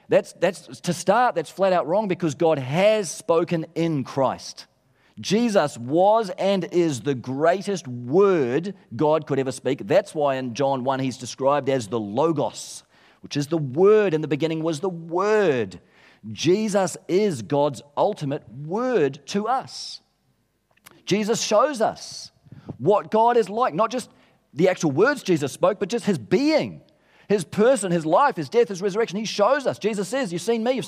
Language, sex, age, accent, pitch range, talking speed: English, male, 40-59, Australian, 145-205 Hz, 170 wpm